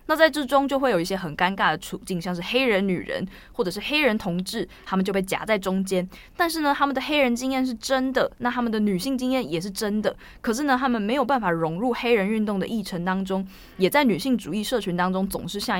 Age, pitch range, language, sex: 20-39, 180-245 Hz, Chinese, female